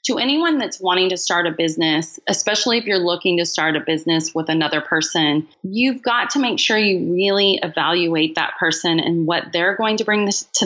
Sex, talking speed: female, 205 wpm